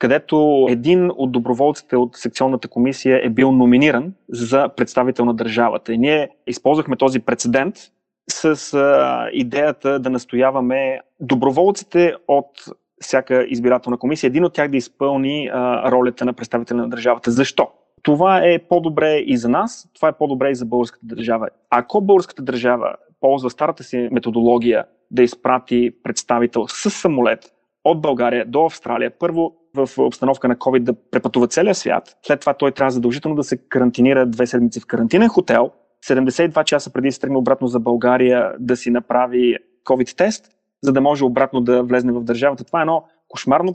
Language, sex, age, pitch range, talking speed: Bulgarian, male, 30-49, 125-150 Hz, 155 wpm